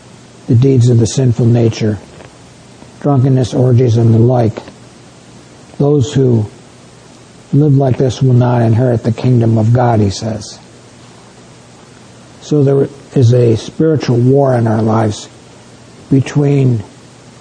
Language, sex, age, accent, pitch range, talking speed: English, male, 60-79, American, 115-130 Hz, 120 wpm